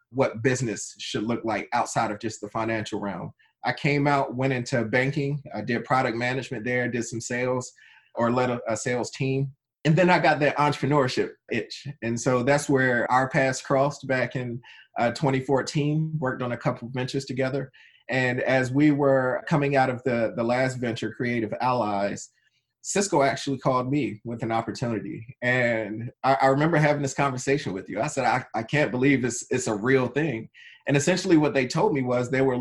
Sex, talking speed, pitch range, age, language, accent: male, 190 wpm, 120-140 Hz, 30-49, English, American